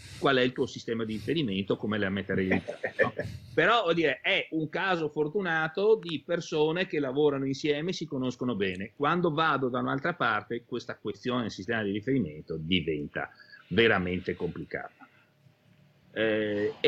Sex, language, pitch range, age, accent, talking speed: male, Italian, 120-160 Hz, 40-59, native, 150 wpm